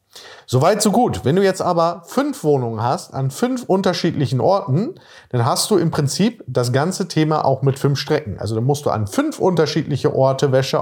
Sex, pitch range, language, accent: male, 130-185 Hz, German, German